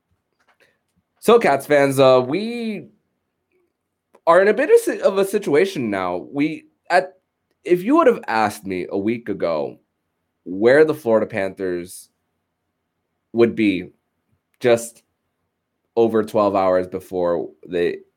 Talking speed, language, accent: 120 wpm, English, American